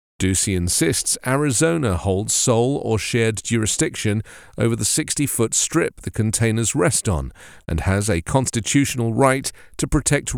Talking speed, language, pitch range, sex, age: 135 wpm, English, 100-135 Hz, male, 40-59